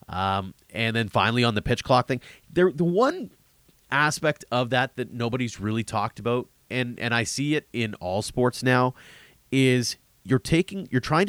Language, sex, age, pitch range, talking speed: English, male, 30-49, 105-130 Hz, 170 wpm